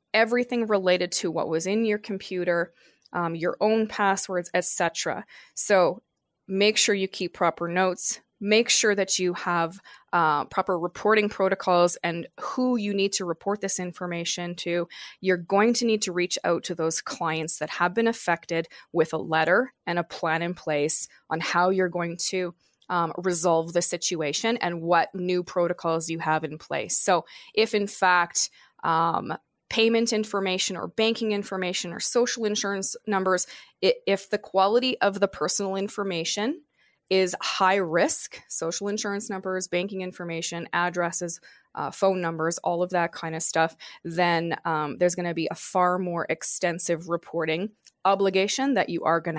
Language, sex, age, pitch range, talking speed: English, female, 20-39, 170-205 Hz, 160 wpm